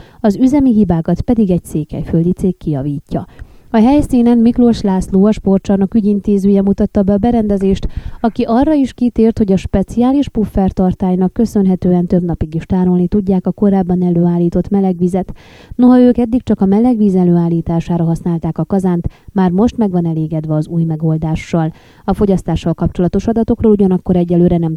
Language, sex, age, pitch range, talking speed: Hungarian, female, 20-39, 175-215 Hz, 150 wpm